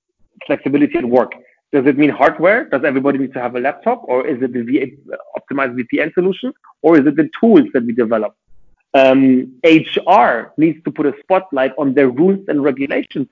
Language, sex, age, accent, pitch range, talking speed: German, male, 40-59, German, 130-155 Hz, 190 wpm